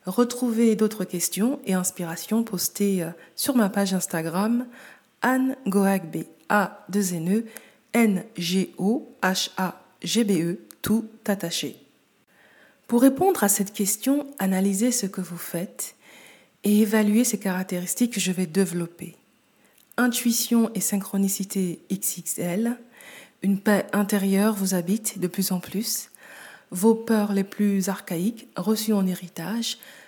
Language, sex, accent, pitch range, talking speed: French, female, French, 185-225 Hz, 125 wpm